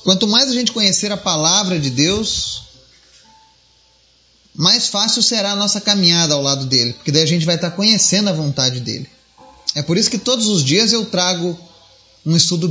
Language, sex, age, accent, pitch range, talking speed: Portuguese, male, 30-49, Brazilian, 135-205 Hz, 185 wpm